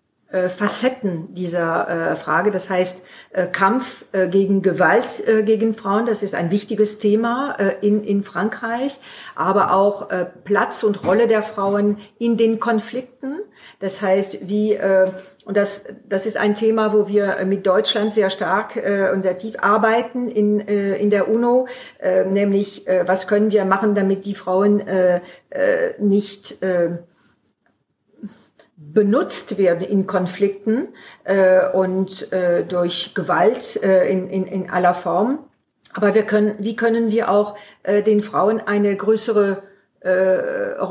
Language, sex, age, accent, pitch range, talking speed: German, female, 50-69, German, 190-220 Hz, 150 wpm